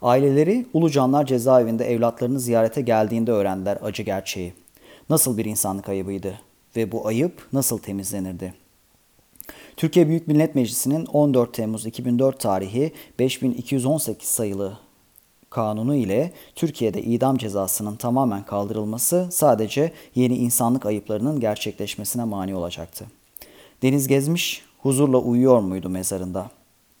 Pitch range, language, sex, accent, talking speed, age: 105-140 Hz, Turkish, male, native, 110 wpm, 40-59